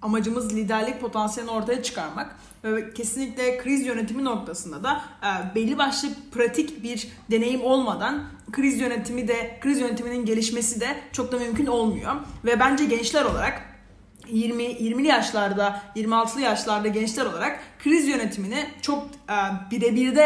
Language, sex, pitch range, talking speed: Turkish, female, 215-255 Hz, 135 wpm